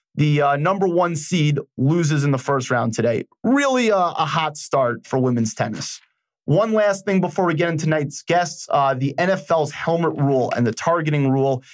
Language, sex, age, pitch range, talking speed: English, male, 30-49, 135-175 Hz, 190 wpm